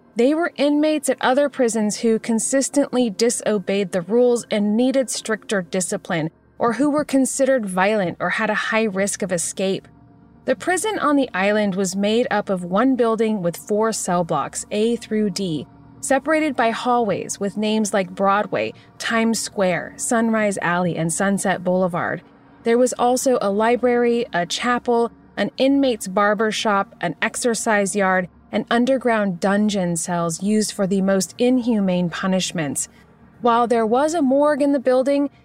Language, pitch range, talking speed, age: English, 195-245 Hz, 155 wpm, 30-49